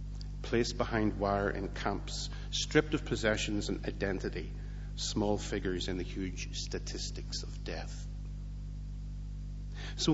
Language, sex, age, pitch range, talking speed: English, male, 50-69, 85-135 Hz, 110 wpm